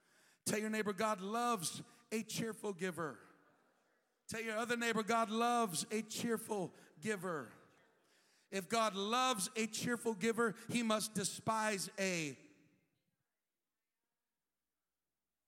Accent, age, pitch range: American, 50-69, 175-235 Hz